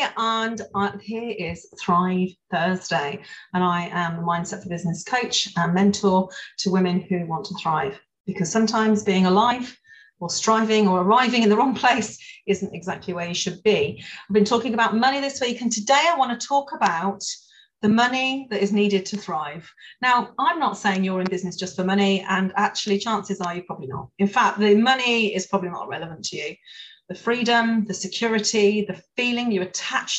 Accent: British